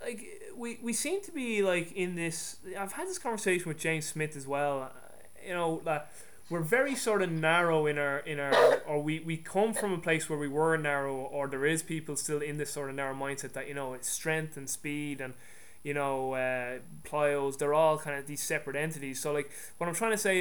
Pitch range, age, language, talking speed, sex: 140-170 Hz, 20-39, English, 230 wpm, male